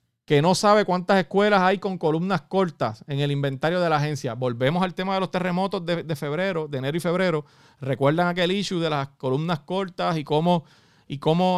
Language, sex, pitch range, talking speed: Spanish, male, 135-180 Hz, 200 wpm